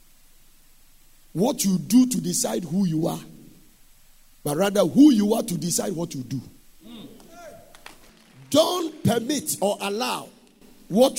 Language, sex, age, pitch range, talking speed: English, male, 50-69, 195-280 Hz, 125 wpm